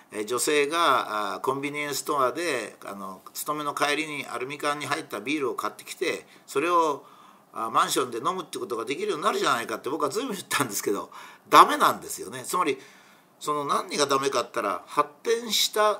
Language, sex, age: Japanese, male, 50-69